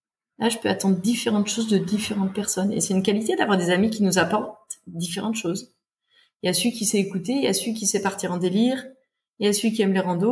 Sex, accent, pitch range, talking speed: female, French, 175-220 Hz, 260 wpm